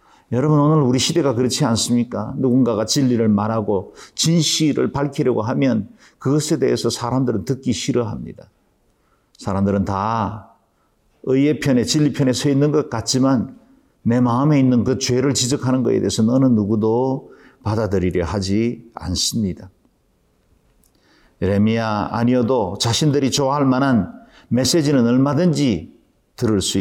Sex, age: male, 50-69